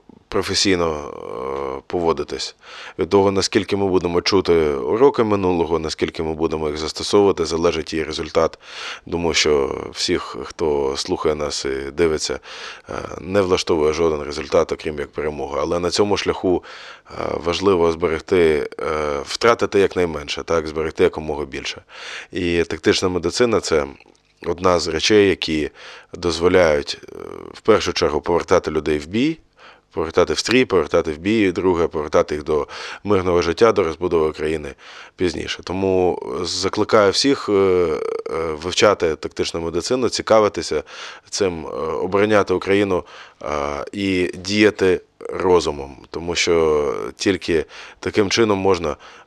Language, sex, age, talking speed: Ukrainian, male, 20-39, 120 wpm